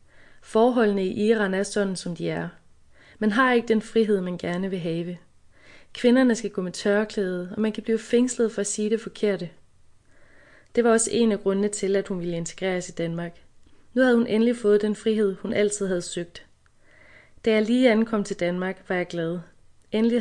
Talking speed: 195 wpm